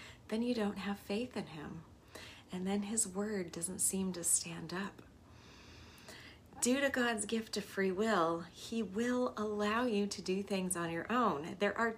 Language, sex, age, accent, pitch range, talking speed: English, female, 30-49, American, 190-235 Hz, 175 wpm